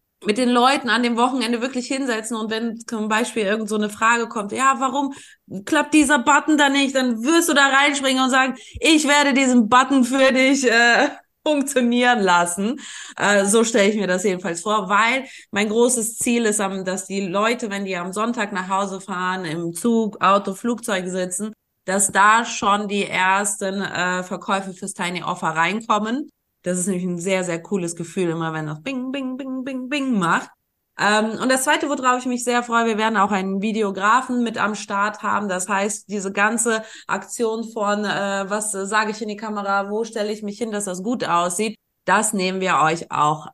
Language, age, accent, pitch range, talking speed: German, 20-39, German, 195-255 Hz, 195 wpm